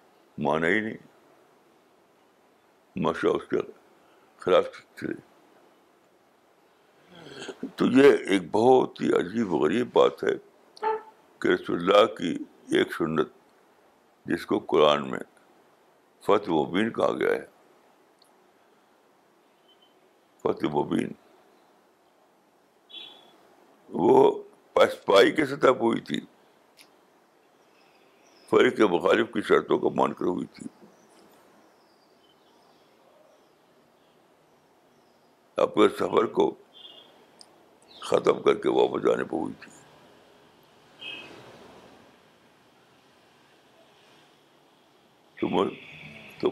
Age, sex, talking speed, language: 60-79, male, 80 wpm, Urdu